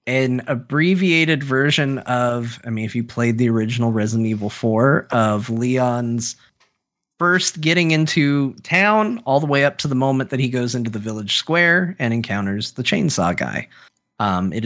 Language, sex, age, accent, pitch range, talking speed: English, male, 30-49, American, 120-160 Hz, 170 wpm